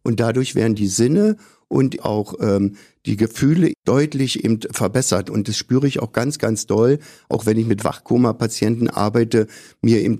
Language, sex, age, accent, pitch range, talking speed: German, male, 50-69, German, 110-130 Hz, 170 wpm